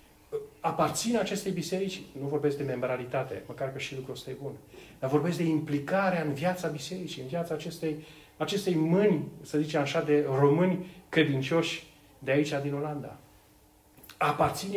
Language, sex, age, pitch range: Romanian, male, 40-59, 115-155 Hz